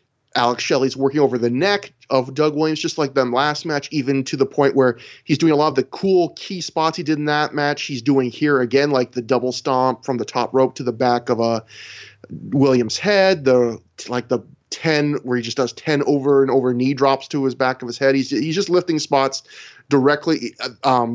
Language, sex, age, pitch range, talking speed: English, male, 20-39, 130-160 Hz, 225 wpm